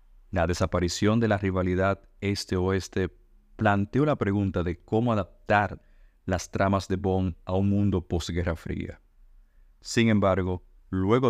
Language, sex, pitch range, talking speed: Spanish, male, 90-105 Hz, 125 wpm